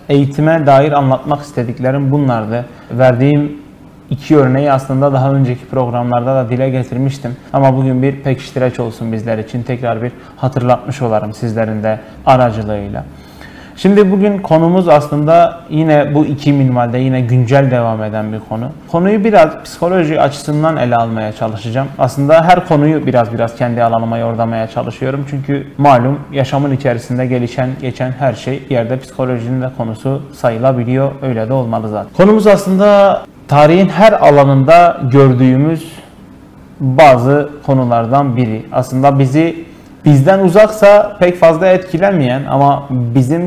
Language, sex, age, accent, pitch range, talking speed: Turkish, male, 30-49, native, 120-145 Hz, 130 wpm